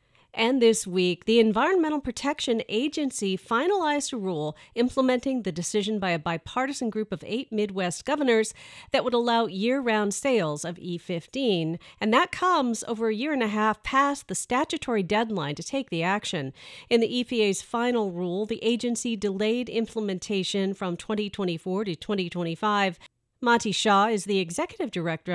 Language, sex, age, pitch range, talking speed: English, female, 40-59, 180-235 Hz, 150 wpm